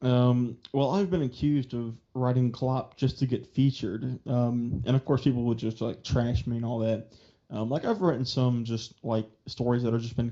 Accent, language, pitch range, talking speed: American, English, 115-130 Hz, 215 wpm